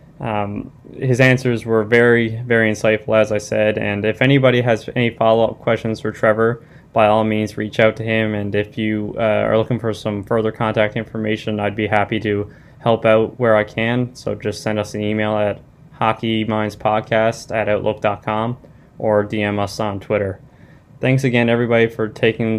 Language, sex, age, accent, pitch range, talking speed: English, male, 20-39, American, 110-120 Hz, 175 wpm